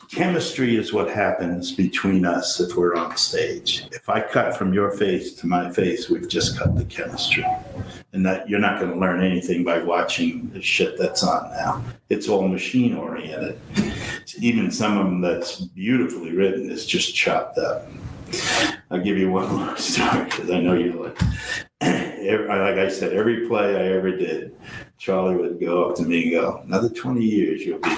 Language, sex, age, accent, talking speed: English, male, 60-79, American, 185 wpm